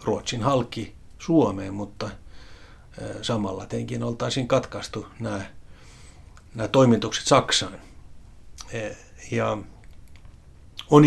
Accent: native